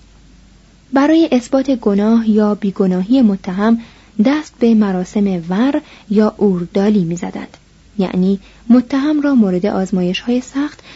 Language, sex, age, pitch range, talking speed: Persian, female, 30-49, 195-255 Hz, 110 wpm